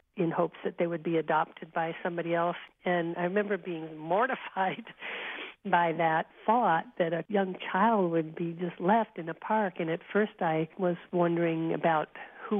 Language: English